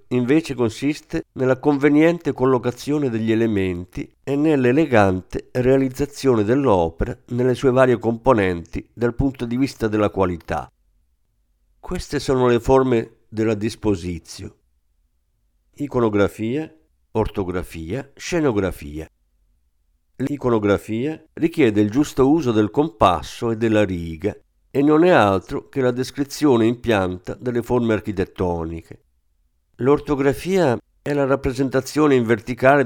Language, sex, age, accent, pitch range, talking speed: Italian, male, 50-69, native, 90-135 Hz, 105 wpm